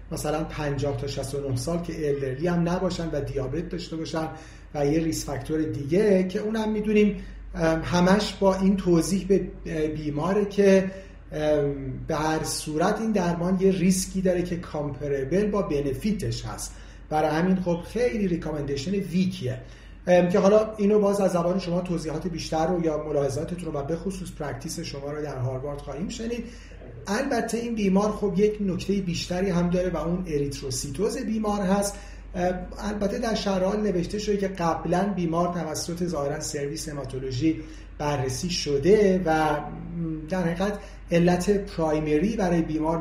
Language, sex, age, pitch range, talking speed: Persian, male, 40-59, 150-195 Hz, 145 wpm